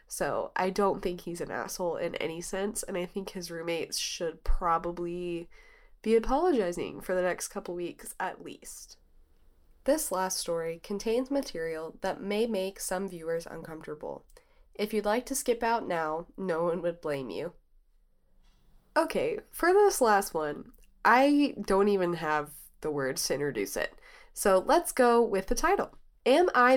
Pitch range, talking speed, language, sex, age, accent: 175-255 Hz, 160 wpm, English, female, 20-39, American